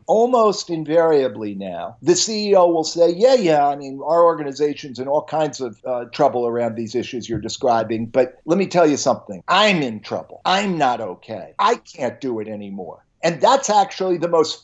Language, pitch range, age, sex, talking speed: English, 135-180 Hz, 50-69, male, 190 wpm